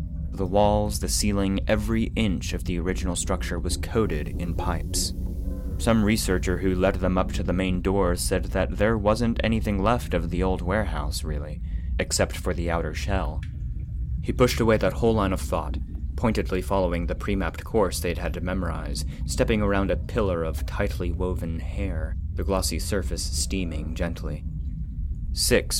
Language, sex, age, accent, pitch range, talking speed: English, male, 30-49, American, 80-95 Hz, 165 wpm